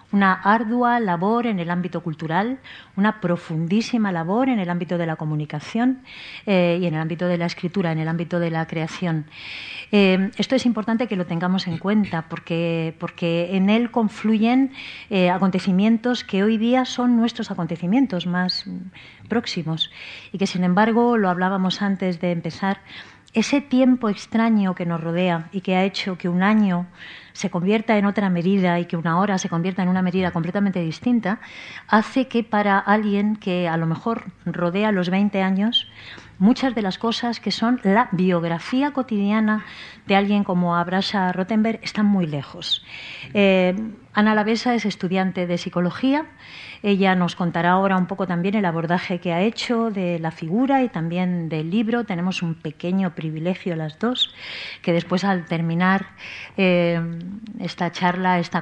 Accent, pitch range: Spanish, 175-215 Hz